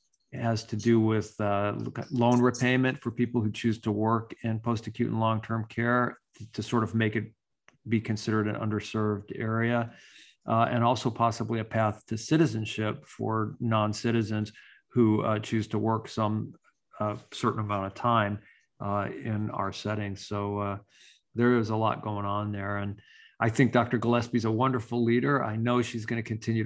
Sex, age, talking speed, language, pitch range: male, 40-59, 175 wpm, English, 105-115 Hz